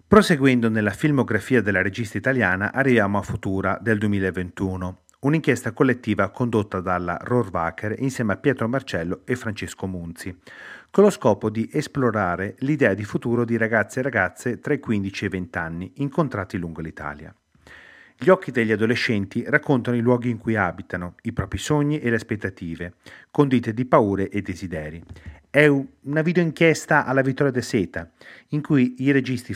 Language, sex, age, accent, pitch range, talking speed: Italian, male, 30-49, native, 95-130 Hz, 160 wpm